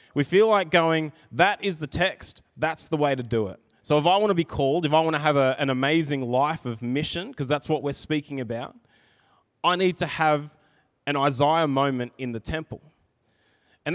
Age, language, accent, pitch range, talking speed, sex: 20-39, English, Australian, 135-175 Hz, 210 wpm, male